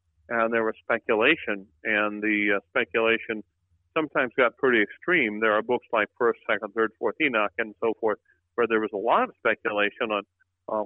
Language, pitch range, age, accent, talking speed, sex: English, 105-125 Hz, 50-69, American, 180 wpm, male